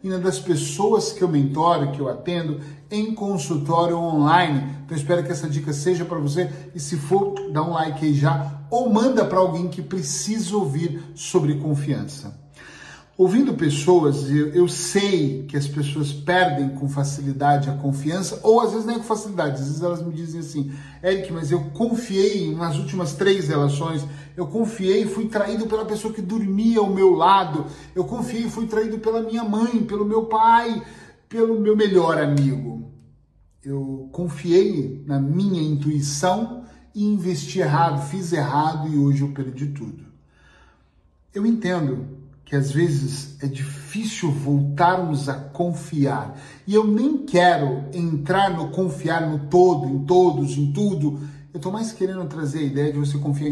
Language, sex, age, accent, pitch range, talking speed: Portuguese, male, 40-59, Brazilian, 145-185 Hz, 160 wpm